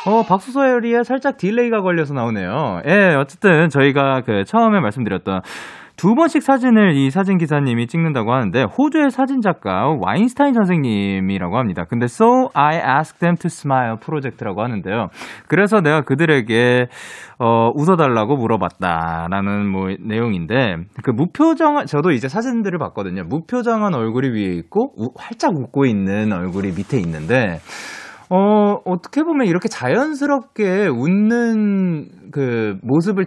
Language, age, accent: Korean, 20-39, native